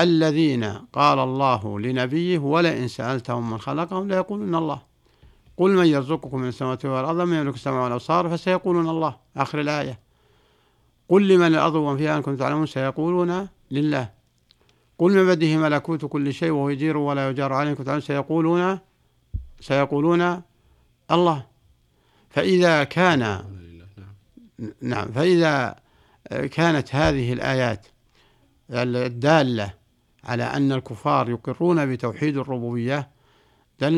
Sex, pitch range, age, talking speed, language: male, 120-160 Hz, 60-79, 110 wpm, Arabic